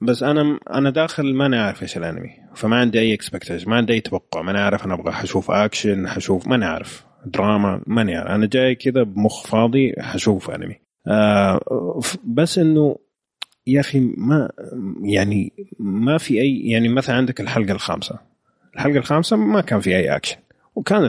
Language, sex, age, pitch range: Arabic, male, 30-49, 100-135 Hz